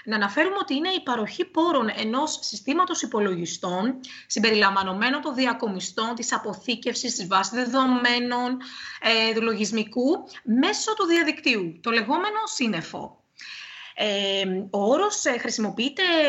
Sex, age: female, 20-39